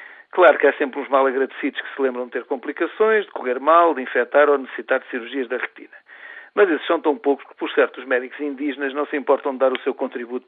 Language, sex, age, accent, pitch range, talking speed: Portuguese, male, 50-69, Portuguese, 140-170 Hz, 250 wpm